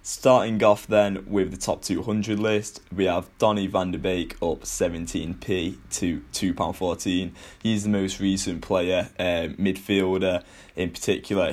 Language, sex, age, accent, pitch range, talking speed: English, male, 10-29, British, 90-100 Hz, 140 wpm